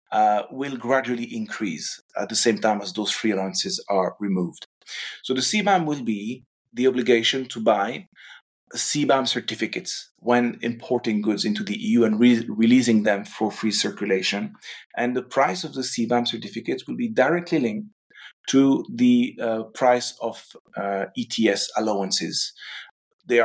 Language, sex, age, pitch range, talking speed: English, male, 30-49, 110-130 Hz, 150 wpm